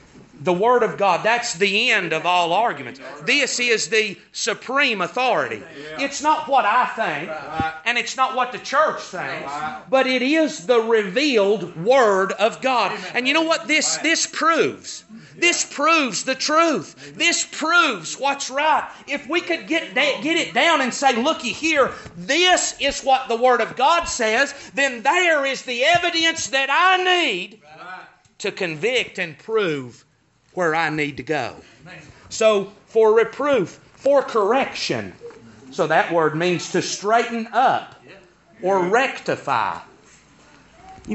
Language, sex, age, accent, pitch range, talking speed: English, male, 40-59, American, 180-280 Hz, 145 wpm